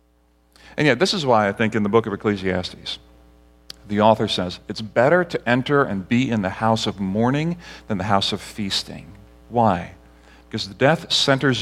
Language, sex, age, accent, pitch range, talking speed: English, male, 40-59, American, 100-140 Hz, 180 wpm